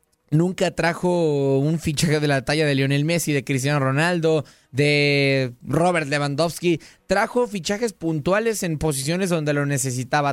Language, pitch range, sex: Spanish, 145-180 Hz, male